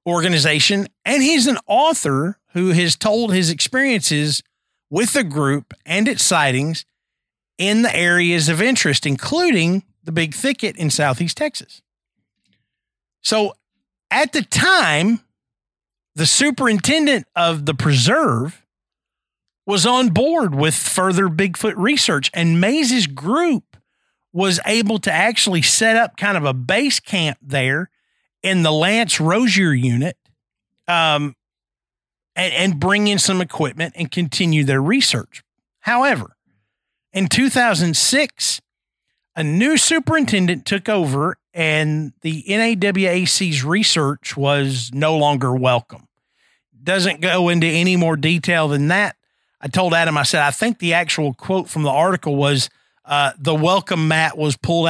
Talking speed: 130 wpm